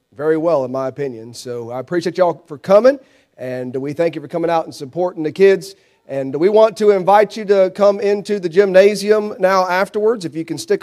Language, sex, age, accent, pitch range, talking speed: English, male, 30-49, American, 155-200 Hz, 215 wpm